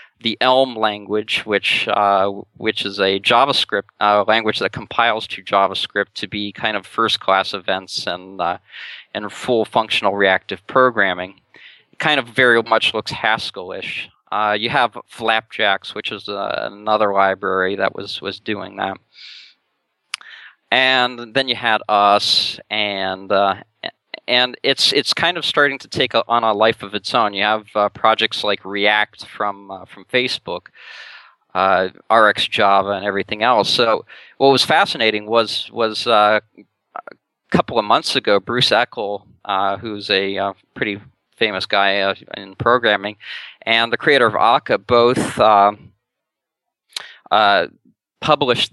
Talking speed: 150 wpm